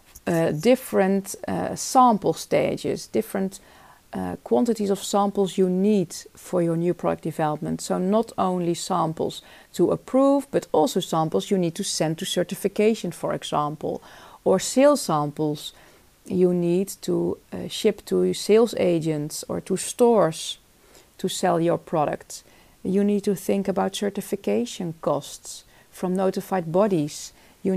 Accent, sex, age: Dutch, female, 40-59